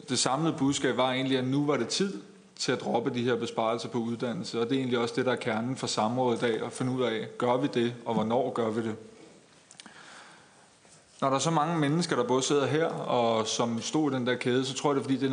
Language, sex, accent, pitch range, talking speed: Danish, male, native, 115-135 Hz, 265 wpm